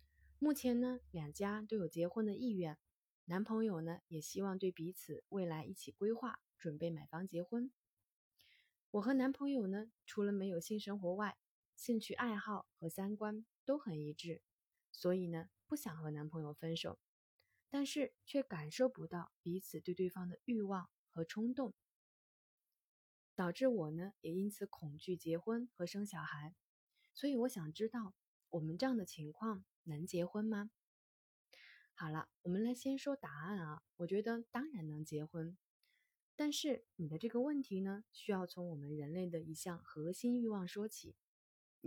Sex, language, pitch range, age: female, Chinese, 165-230 Hz, 20-39